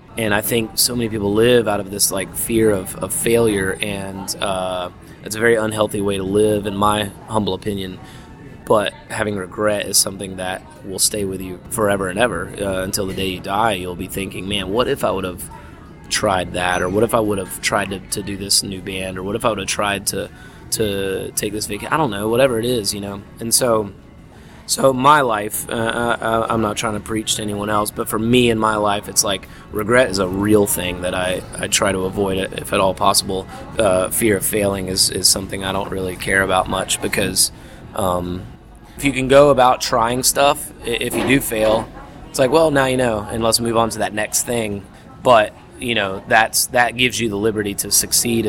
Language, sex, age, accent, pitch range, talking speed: English, male, 20-39, American, 95-115 Hz, 225 wpm